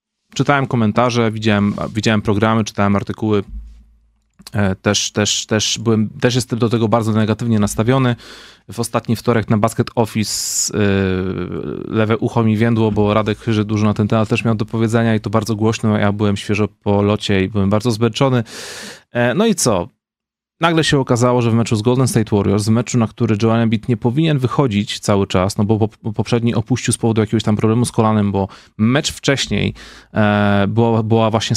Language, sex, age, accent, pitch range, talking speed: Polish, male, 30-49, native, 105-120 Hz, 175 wpm